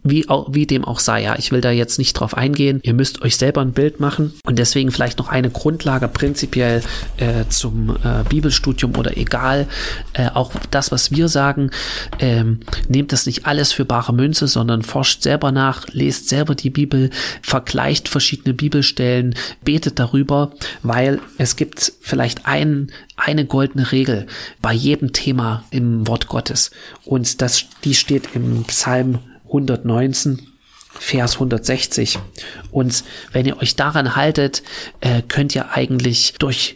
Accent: German